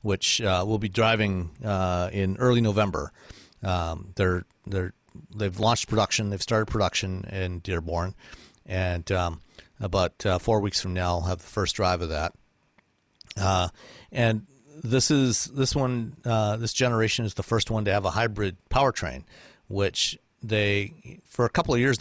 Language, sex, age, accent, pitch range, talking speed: English, male, 50-69, American, 95-115 Hz, 160 wpm